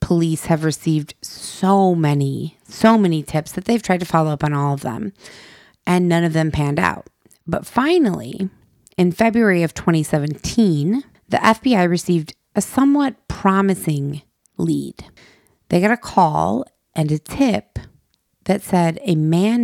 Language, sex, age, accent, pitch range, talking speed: English, female, 30-49, American, 155-200 Hz, 145 wpm